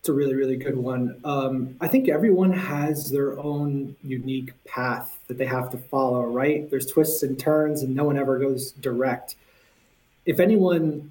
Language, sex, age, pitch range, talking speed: English, male, 20-39, 125-145 Hz, 180 wpm